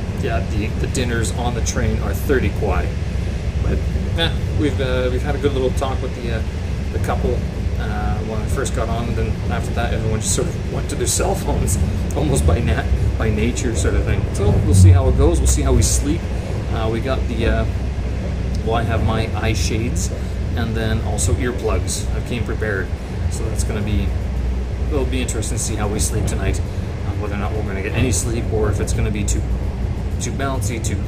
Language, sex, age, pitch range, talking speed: English, male, 30-49, 95-105 Hz, 220 wpm